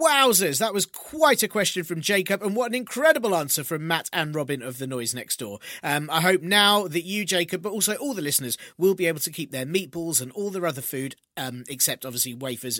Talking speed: 235 wpm